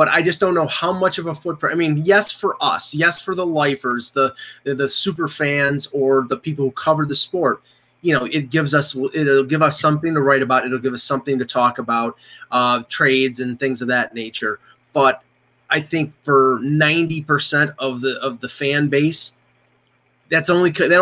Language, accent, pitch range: English, American, 130-160 Hz